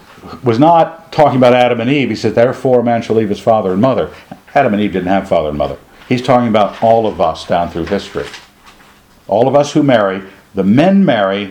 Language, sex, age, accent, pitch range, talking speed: English, male, 60-79, American, 110-155 Hz, 225 wpm